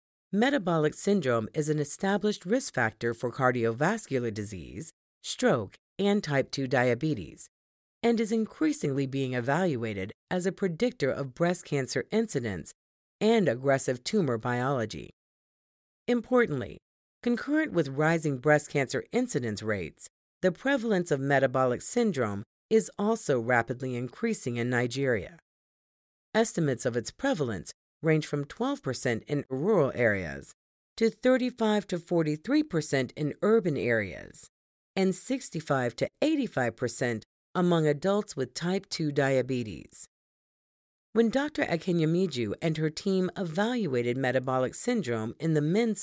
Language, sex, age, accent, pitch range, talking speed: English, female, 50-69, American, 125-210 Hz, 120 wpm